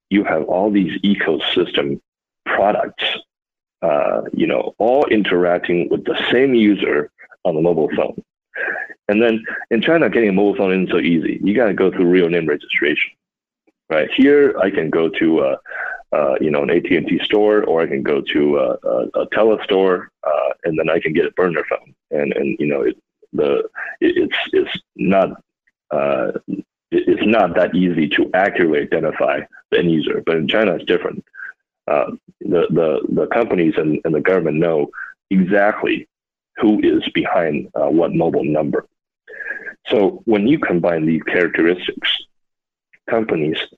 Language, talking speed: English, 165 wpm